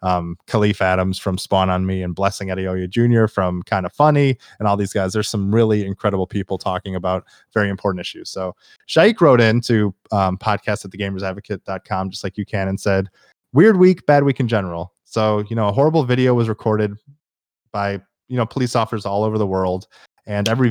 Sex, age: male, 20-39